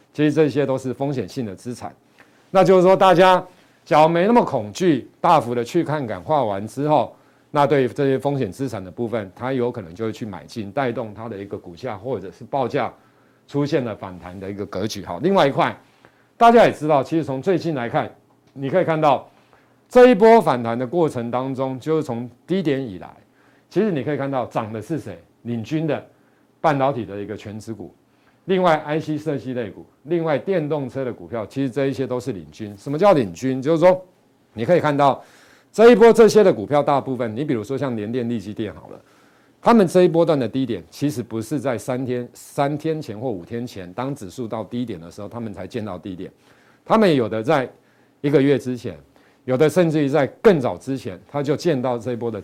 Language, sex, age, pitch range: Chinese, male, 50-69, 115-155 Hz